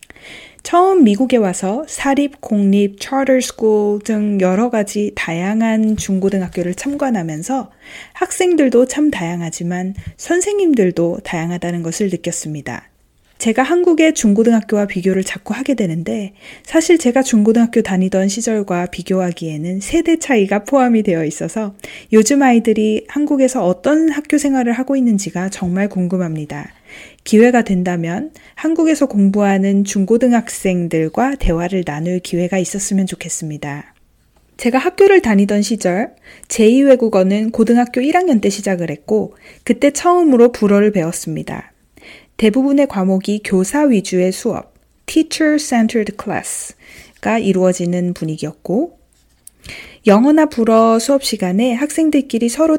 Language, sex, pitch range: Korean, female, 185-265 Hz